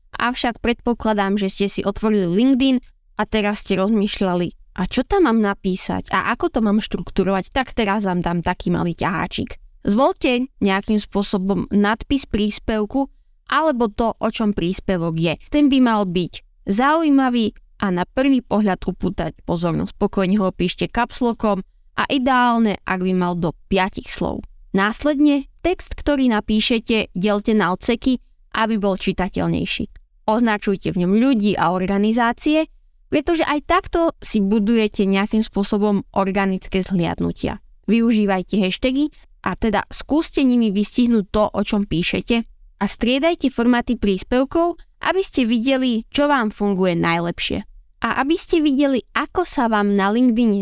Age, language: 20-39, Slovak